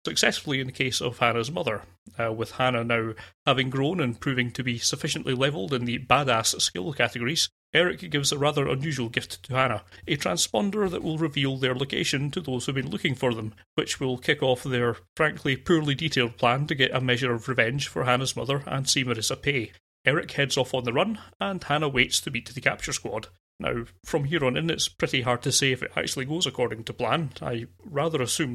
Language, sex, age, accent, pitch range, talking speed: English, male, 30-49, British, 120-150 Hz, 215 wpm